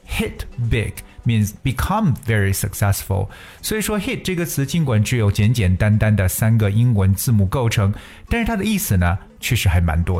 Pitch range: 100-125 Hz